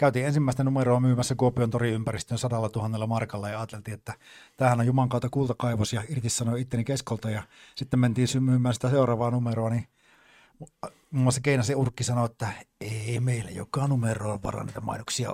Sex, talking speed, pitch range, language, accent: male, 170 wpm, 115-135 Hz, Finnish, native